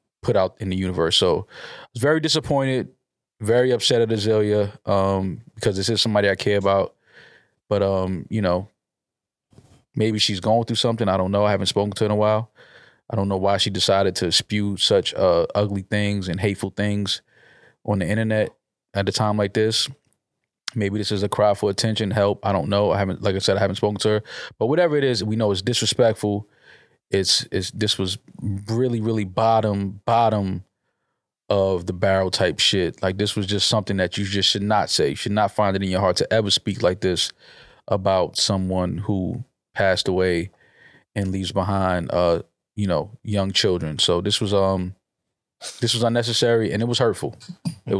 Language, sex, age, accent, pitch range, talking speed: English, male, 20-39, American, 95-110 Hz, 195 wpm